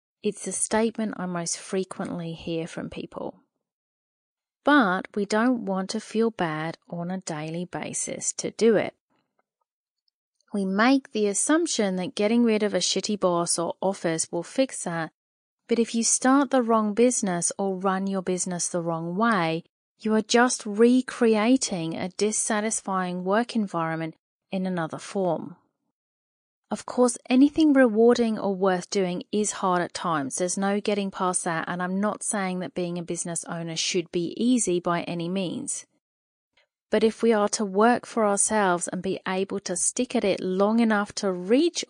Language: English